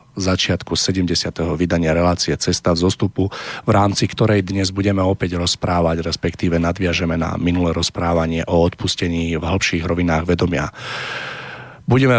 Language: Slovak